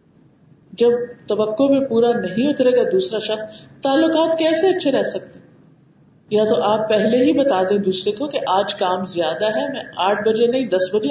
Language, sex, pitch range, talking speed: Urdu, female, 215-290 Hz, 175 wpm